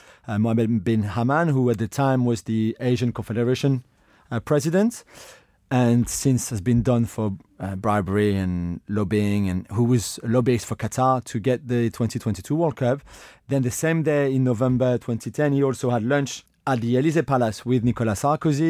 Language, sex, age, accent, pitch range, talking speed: English, male, 30-49, French, 115-140 Hz, 175 wpm